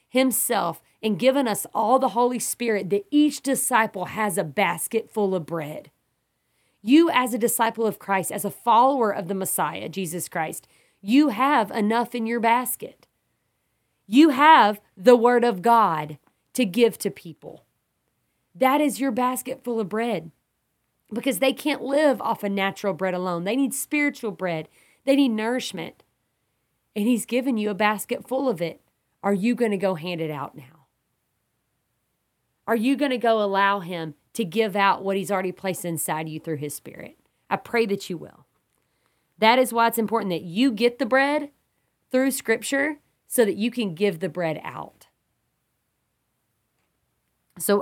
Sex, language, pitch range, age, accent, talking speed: female, English, 180-245 Hz, 30-49, American, 165 wpm